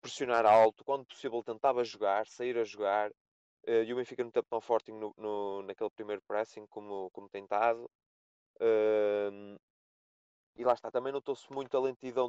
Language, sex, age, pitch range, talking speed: Portuguese, male, 20-39, 105-125 Hz, 175 wpm